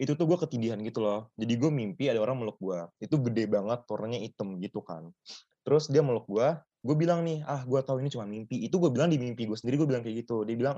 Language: Indonesian